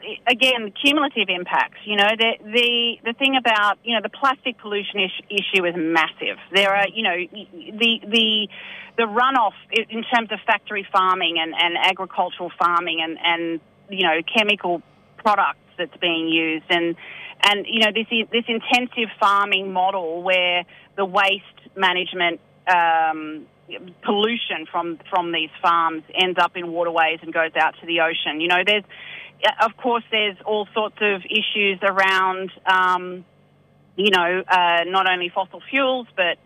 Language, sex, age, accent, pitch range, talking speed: English, female, 30-49, Australian, 170-215 Hz, 155 wpm